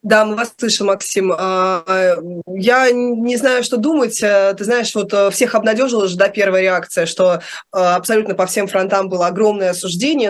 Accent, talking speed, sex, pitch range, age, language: native, 150 wpm, female, 185-220 Hz, 20-39, Russian